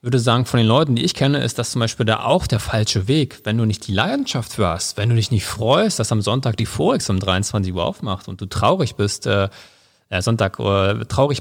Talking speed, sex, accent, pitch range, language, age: 250 wpm, male, German, 100-125 Hz, German, 40-59